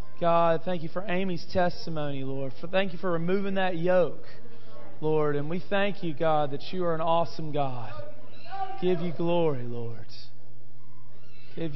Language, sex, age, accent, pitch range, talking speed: English, male, 40-59, American, 125-205 Hz, 155 wpm